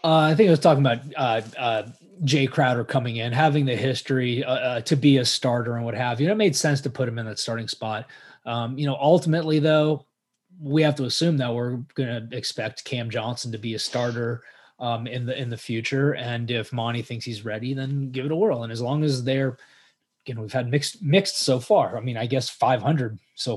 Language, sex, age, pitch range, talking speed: English, male, 20-39, 115-140 Hz, 240 wpm